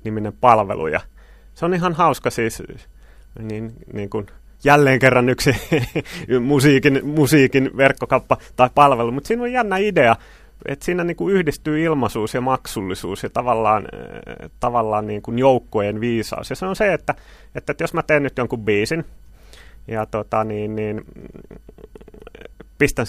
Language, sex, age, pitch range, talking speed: Finnish, male, 30-49, 115-150 Hz, 150 wpm